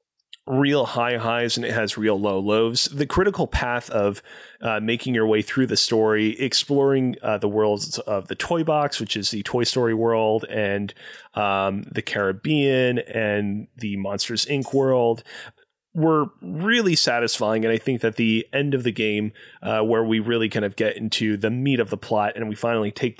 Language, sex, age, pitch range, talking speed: English, male, 30-49, 105-125 Hz, 185 wpm